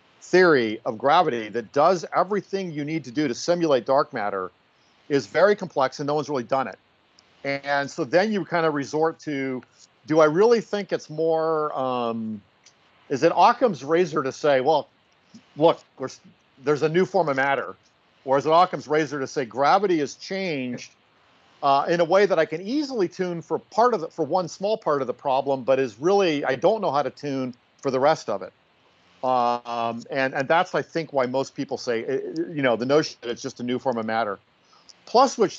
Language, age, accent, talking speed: English, 50-69, American, 200 wpm